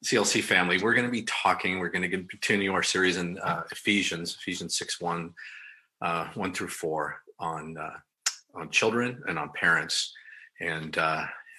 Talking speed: 165 wpm